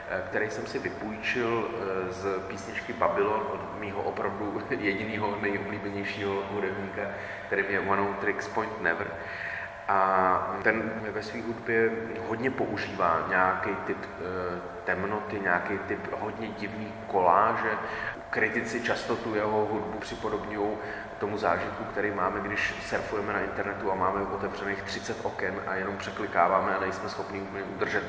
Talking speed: 130 wpm